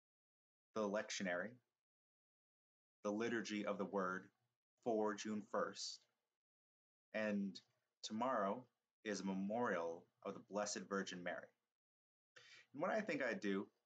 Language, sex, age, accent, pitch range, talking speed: English, male, 30-49, American, 100-115 Hz, 115 wpm